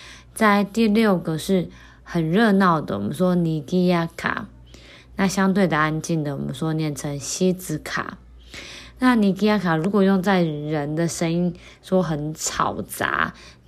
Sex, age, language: female, 20-39, Chinese